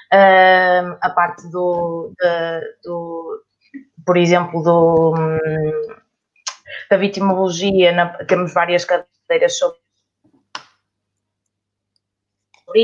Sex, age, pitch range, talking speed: female, 20-39, 170-210 Hz, 75 wpm